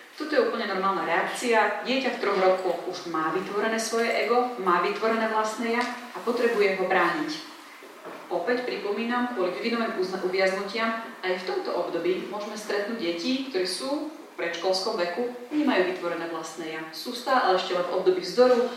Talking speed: 165 wpm